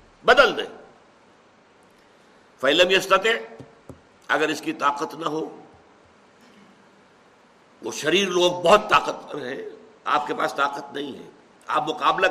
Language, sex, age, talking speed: Urdu, male, 60-79, 115 wpm